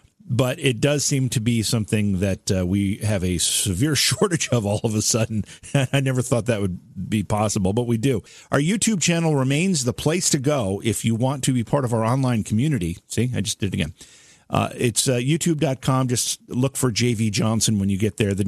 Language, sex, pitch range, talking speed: English, male, 100-130 Hz, 220 wpm